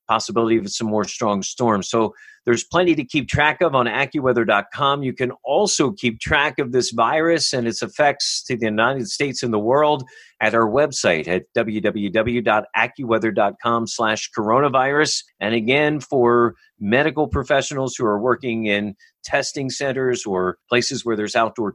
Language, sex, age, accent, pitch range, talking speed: English, male, 50-69, American, 110-145 Hz, 150 wpm